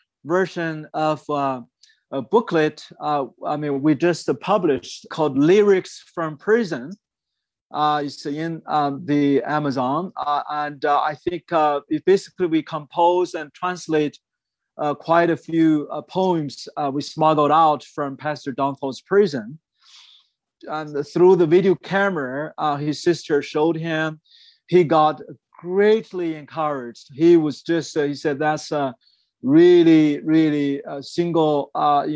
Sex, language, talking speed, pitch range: male, English, 145 wpm, 150-175 Hz